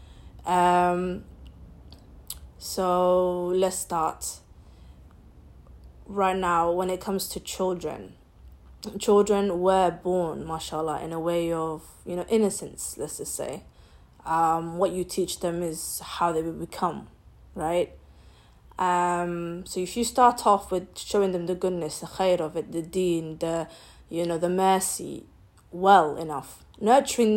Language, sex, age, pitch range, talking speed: English, female, 20-39, 165-200 Hz, 135 wpm